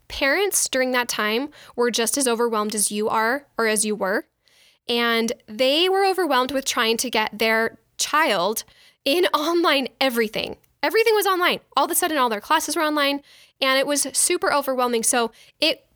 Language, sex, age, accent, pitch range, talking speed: English, female, 10-29, American, 230-315 Hz, 175 wpm